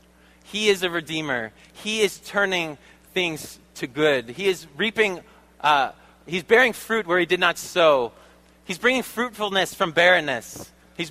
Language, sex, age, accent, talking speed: English, male, 20-39, American, 145 wpm